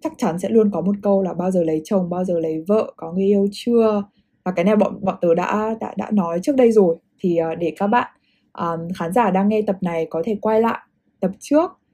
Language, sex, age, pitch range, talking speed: Vietnamese, female, 20-39, 180-235 Hz, 250 wpm